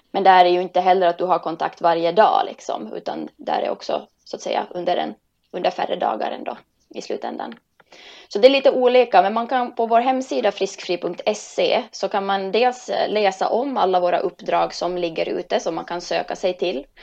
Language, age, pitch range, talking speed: Swedish, 20-39, 175-200 Hz, 200 wpm